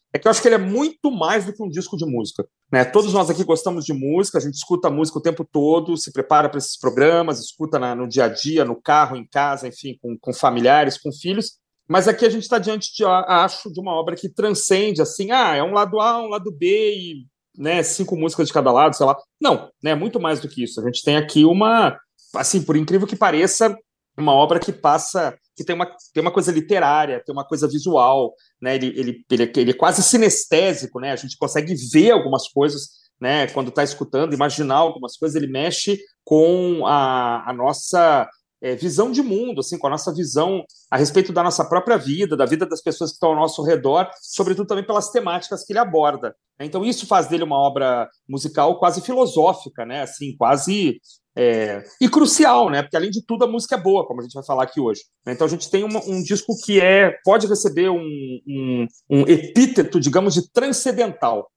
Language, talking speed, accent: Portuguese, 210 wpm, Brazilian